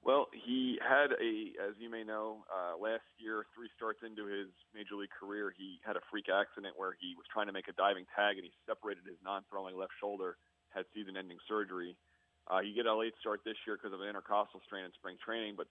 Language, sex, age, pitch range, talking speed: English, male, 40-59, 95-115 Hz, 225 wpm